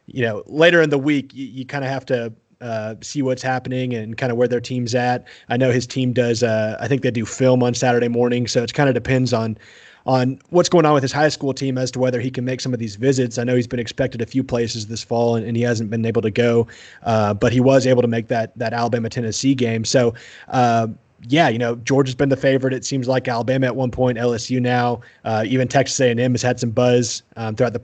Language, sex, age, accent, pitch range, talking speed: English, male, 30-49, American, 115-130 Hz, 265 wpm